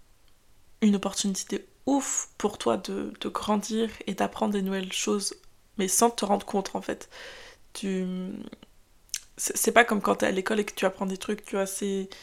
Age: 20-39